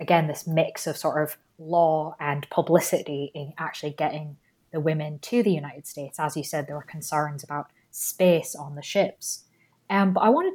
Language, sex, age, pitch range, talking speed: English, female, 20-39, 155-195 Hz, 190 wpm